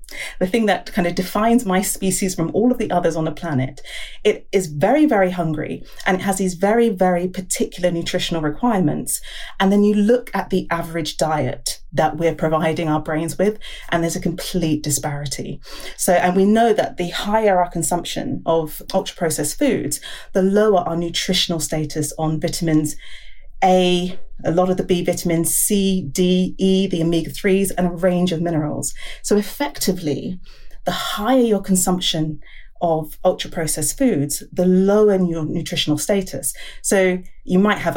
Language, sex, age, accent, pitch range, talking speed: English, female, 30-49, British, 165-205 Hz, 165 wpm